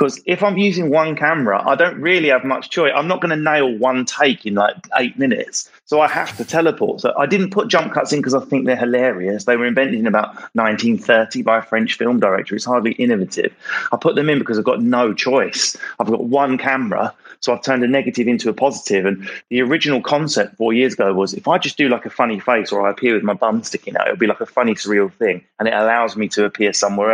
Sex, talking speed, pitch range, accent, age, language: male, 250 wpm, 105-135 Hz, British, 30-49, English